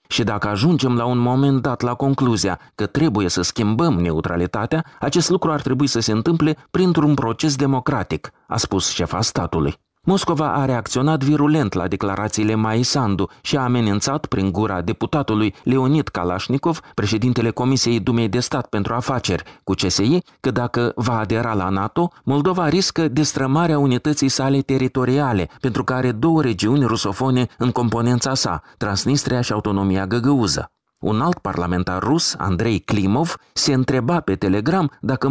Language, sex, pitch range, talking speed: Romanian, male, 105-150 Hz, 150 wpm